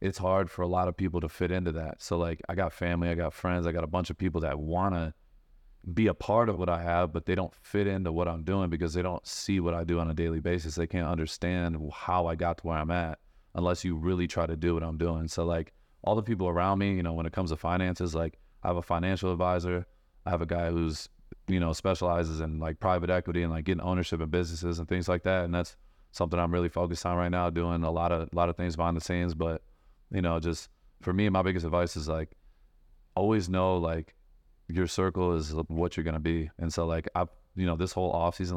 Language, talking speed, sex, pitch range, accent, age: English, 260 wpm, male, 80-90 Hz, American, 30-49